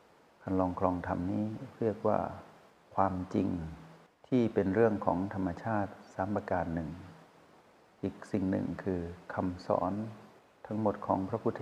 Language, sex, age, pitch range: Thai, male, 60-79, 95-110 Hz